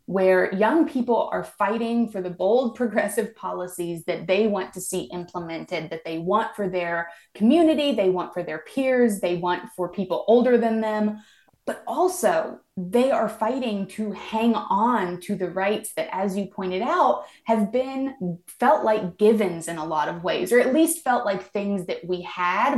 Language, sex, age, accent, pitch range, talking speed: English, female, 20-39, American, 180-220 Hz, 180 wpm